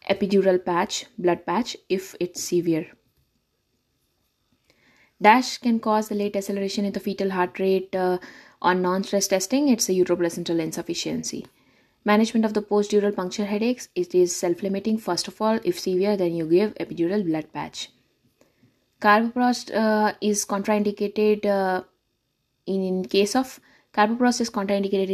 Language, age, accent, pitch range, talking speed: English, 20-39, Indian, 185-220 Hz, 140 wpm